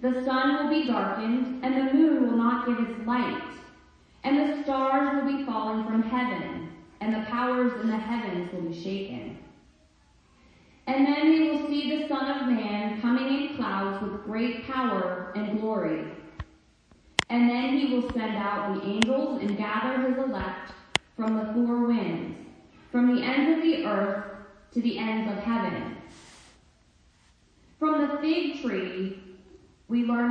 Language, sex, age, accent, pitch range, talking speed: English, female, 30-49, American, 205-265 Hz, 160 wpm